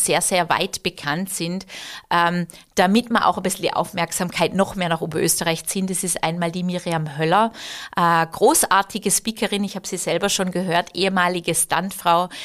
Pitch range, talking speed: 175-210 Hz, 165 wpm